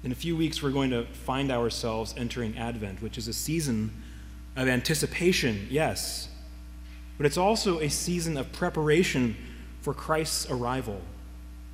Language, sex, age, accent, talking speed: English, male, 30-49, American, 145 wpm